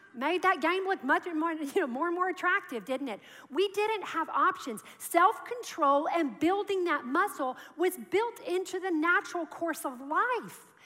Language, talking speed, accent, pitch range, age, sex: English, 175 wpm, American, 270-365 Hz, 40-59, female